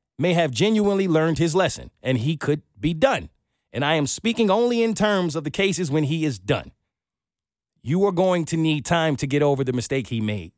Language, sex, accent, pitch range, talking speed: English, male, American, 115-165 Hz, 215 wpm